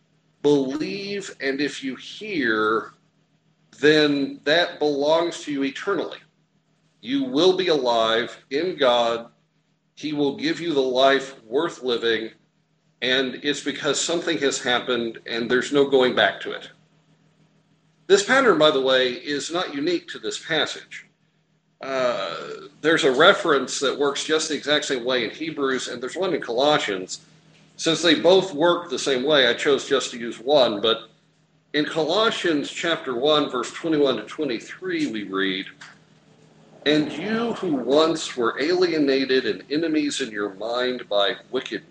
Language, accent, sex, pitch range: English, American, male, 135-170 Hz